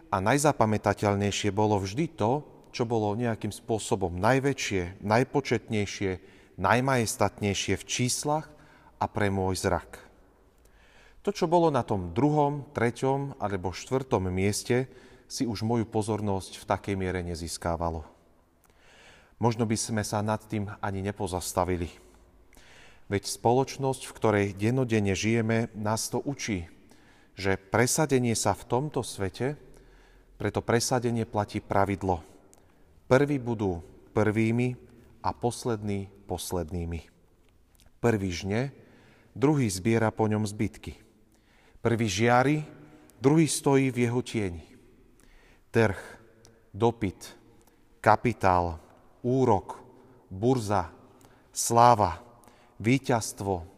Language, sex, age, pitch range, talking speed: Slovak, male, 40-59, 95-125 Hz, 100 wpm